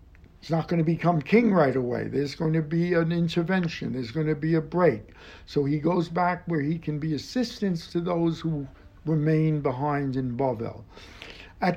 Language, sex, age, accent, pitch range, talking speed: English, male, 60-79, American, 130-175 Hz, 190 wpm